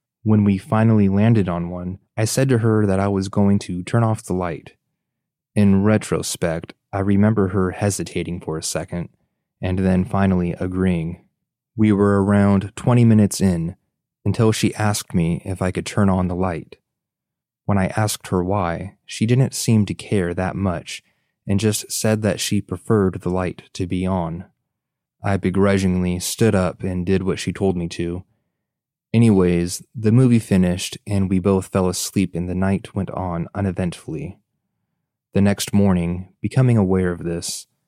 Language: English